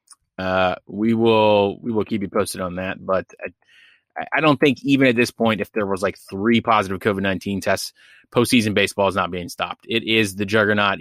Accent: American